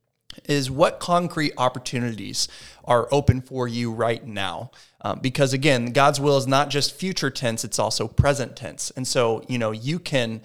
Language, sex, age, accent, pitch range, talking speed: English, male, 30-49, American, 115-140 Hz, 170 wpm